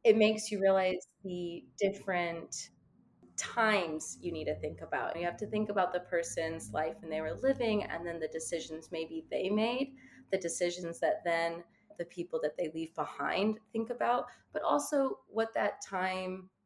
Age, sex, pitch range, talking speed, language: 20-39, female, 165-210 Hz, 175 wpm, English